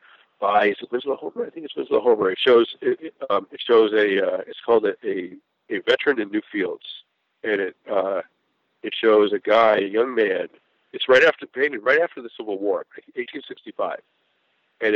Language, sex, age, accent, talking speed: English, male, 50-69, American, 195 wpm